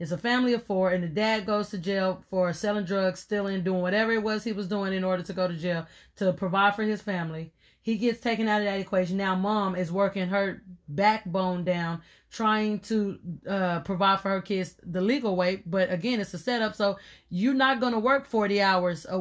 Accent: American